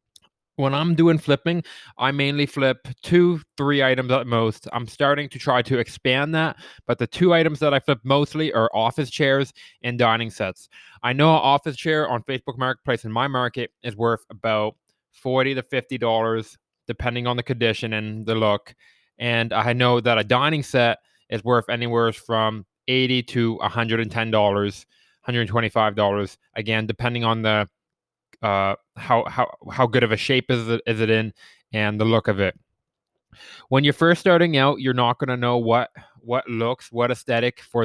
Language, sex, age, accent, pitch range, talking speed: English, male, 20-39, American, 115-145 Hz, 175 wpm